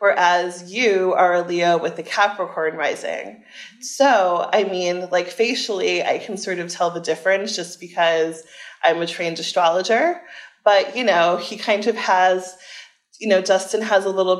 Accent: American